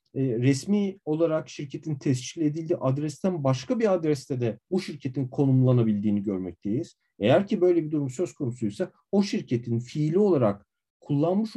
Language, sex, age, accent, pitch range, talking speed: Turkish, male, 50-69, native, 125-165 Hz, 135 wpm